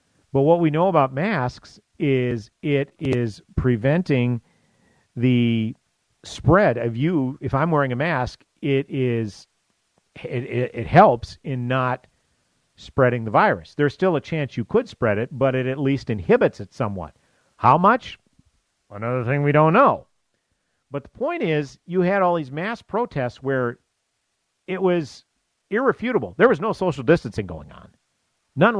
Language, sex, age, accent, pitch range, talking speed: English, male, 50-69, American, 115-150 Hz, 155 wpm